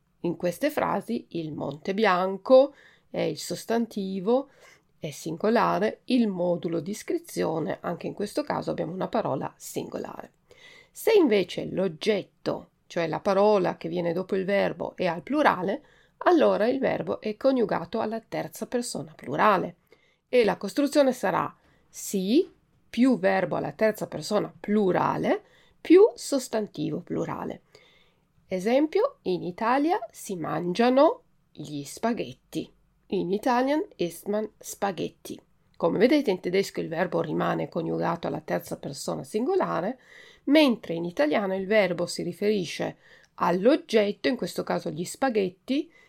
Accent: native